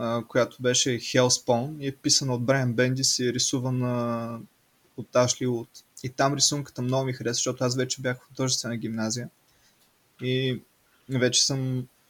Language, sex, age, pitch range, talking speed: Bulgarian, male, 20-39, 125-135 Hz, 155 wpm